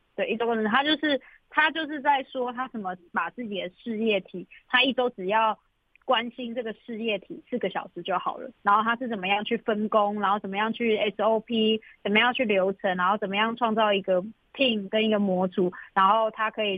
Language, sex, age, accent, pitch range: Chinese, female, 20-39, native, 185-230 Hz